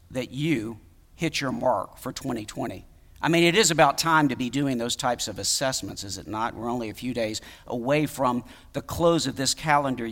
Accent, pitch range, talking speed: American, 90-150 Hz, 210 wpm